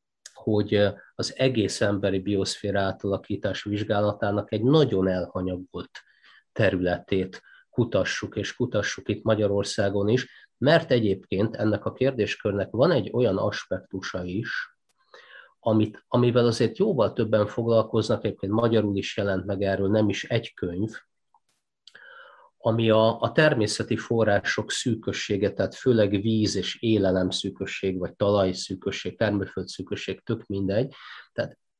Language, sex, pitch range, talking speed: Hungarian, male, 100-120 Hz, 115 wpm